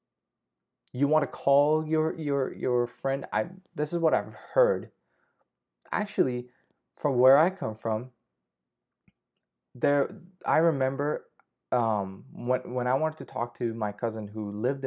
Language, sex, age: English, male, 20-39